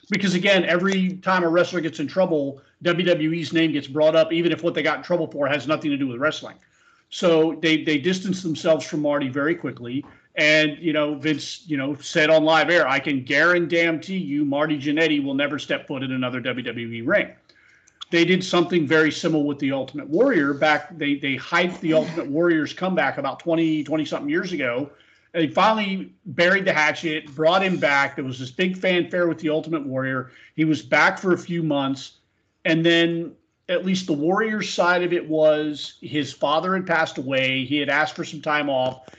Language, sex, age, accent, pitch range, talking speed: English, male, 40-59, American, 145-175 Hz, 200 wpm